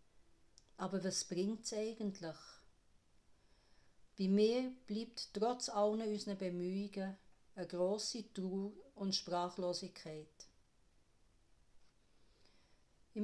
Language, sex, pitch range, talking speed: German, female, 175-210 Hz, 80 wpm